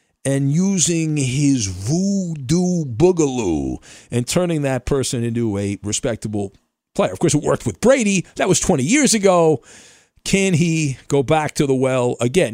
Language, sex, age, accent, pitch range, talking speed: English, male, 50-69, American, 125-175 Hz, 155 wpm